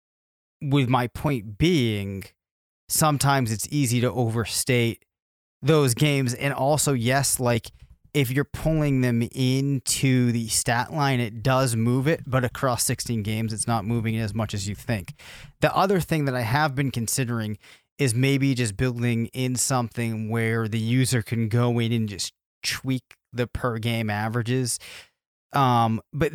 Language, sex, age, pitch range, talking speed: English, male, 30-49, 115-135 Hz, 155 wpm